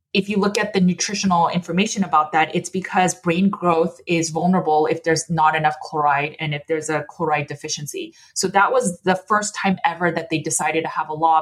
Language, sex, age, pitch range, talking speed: English, female, 20-39, 165-190 Hz, 210 wpm